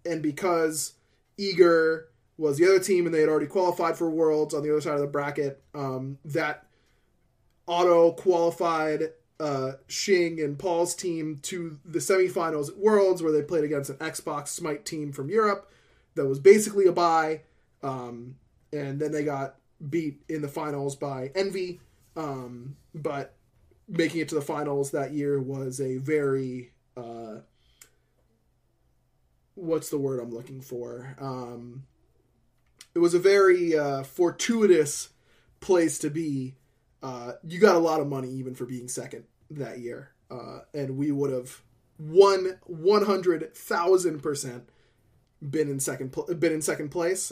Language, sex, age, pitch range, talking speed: English, male, 20-39, 130-165 Hz, 155 wpm